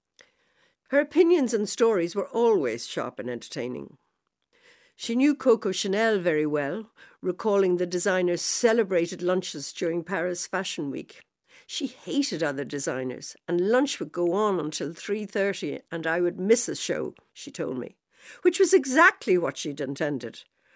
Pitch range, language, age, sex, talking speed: 165-235 Hz, English, 60-79, female, 145 wpm